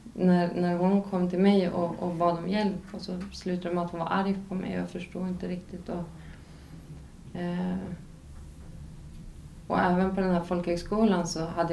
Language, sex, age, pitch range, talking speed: Swedish, female, 20-39, 170-195 Hz, 175 wpm